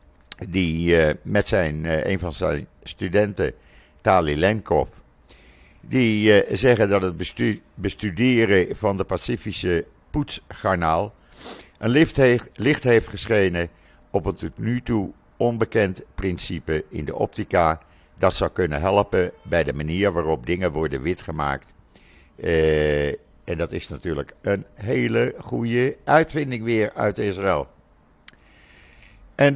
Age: 60-79